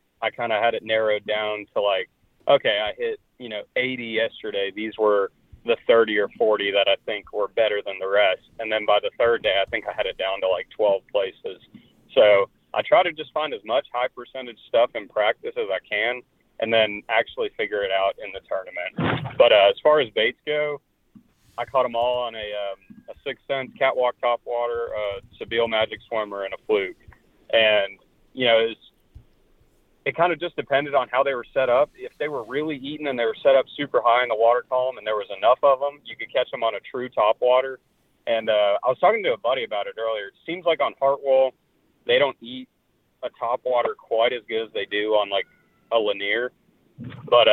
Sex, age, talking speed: male, 30-49, 220 wpm